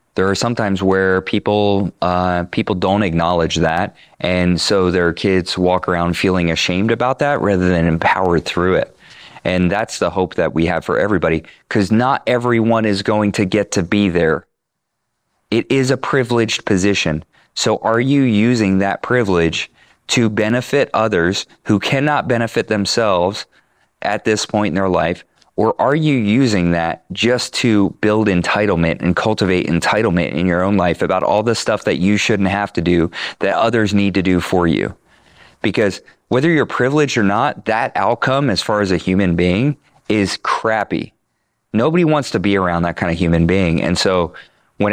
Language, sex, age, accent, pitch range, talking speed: English, male, 30-49, American, 90-110 Hz, 175 wpm